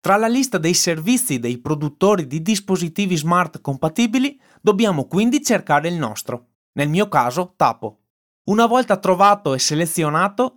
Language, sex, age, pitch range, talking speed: Italian, male, 30-49, 145-220 Hz, 140 wpm